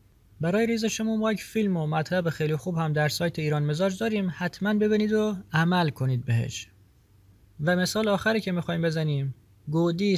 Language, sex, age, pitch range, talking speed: Persian, male, 30-49, 135-195 Hz, 170 wpm